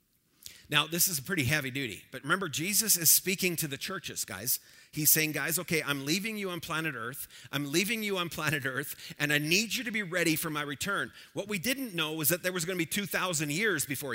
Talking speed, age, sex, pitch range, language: 235 wpm, 40-59, male, 145-195 Hz, English